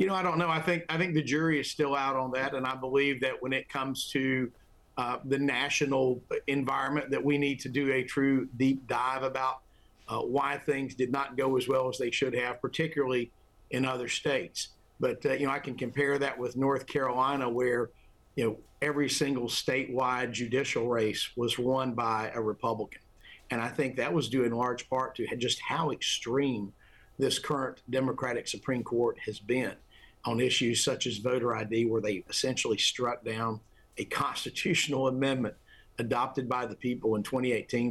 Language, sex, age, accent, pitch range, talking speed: English, male, 50-69, American, 120-140 Hz, 185 wpm